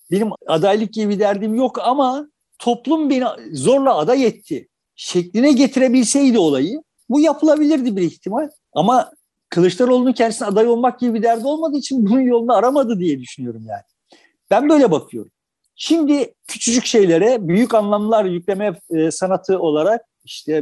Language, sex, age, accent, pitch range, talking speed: Turkish, male, 50-69, native, 175-255 Hz, 135 wpm